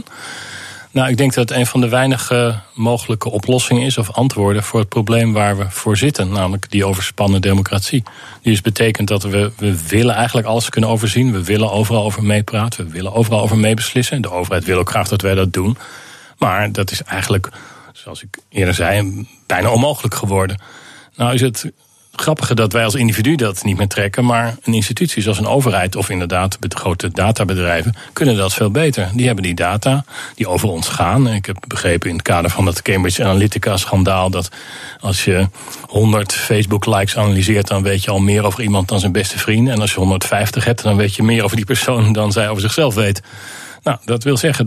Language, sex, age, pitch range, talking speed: Dutch, male, 40-59, 100-120 Hz, 205 wpm